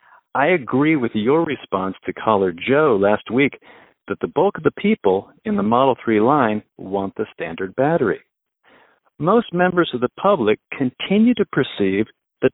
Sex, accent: male, American